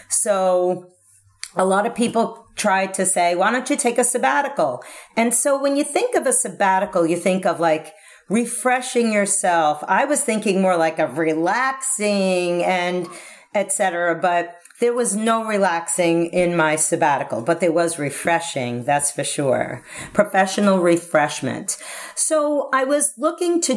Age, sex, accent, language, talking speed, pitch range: 40-59, female, American, English, 150 wpm, 180-240 Hz